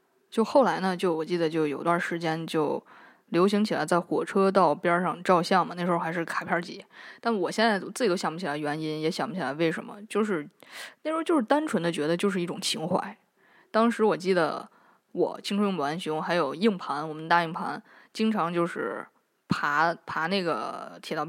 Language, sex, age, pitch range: Chinese, female, 20-39, 165-210 Hz